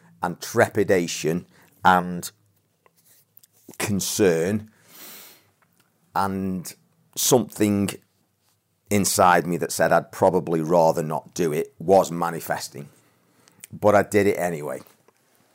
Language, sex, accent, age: English, male, British, 40-59